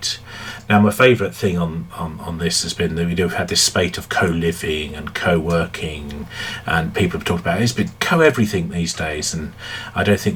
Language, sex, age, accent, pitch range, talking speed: English, male, 40-59, British, 85-110 Hz, 210 wpm